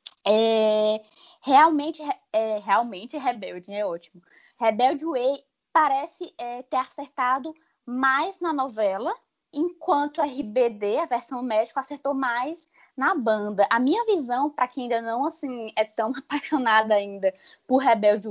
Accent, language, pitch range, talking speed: Brazilian, Portuguese, 215-285 Hz, 130 wpm